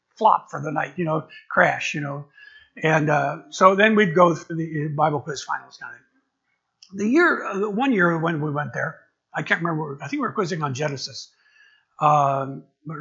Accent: American